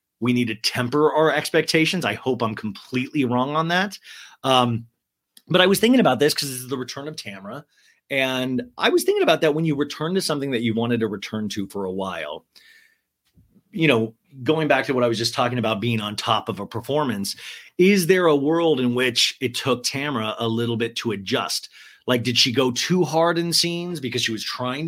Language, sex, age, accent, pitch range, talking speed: English, male, 30-49, American, 120-160 Hz, 215 wpm